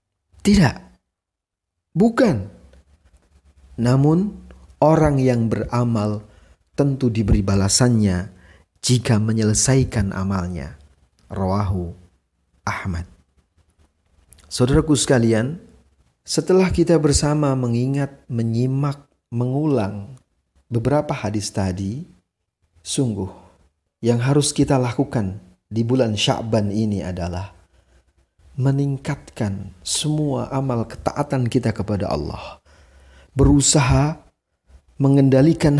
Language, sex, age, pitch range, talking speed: Indonesian, male, 40-59, 90-140 Hz, 75 wpm